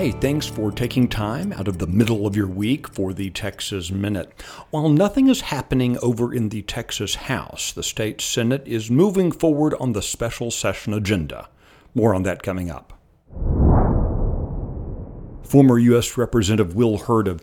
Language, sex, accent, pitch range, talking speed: English, male, American, 95-130 Hz, 160 wpm